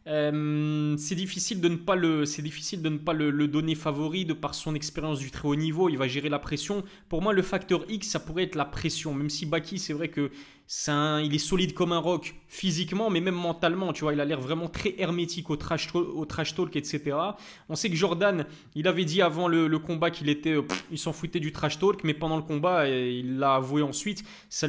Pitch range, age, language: 150-175 Hz, 20-39, French